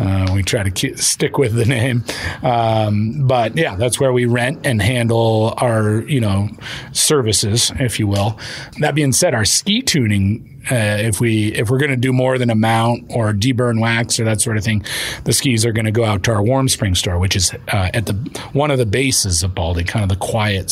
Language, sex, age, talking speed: English, male, 40-59, 225 wpm